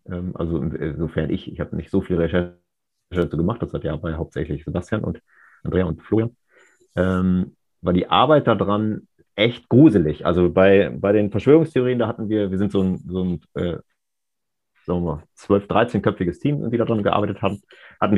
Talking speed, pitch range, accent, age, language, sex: 170 wpm, 90-100 Hz, German, 30-49, German, male